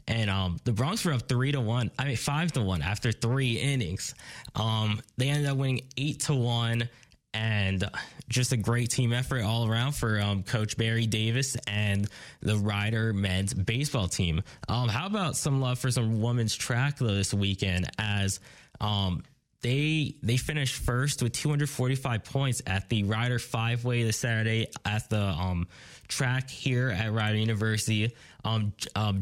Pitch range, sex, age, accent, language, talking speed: 105-130 Hz, male, 10-29, American, English, 165 wpm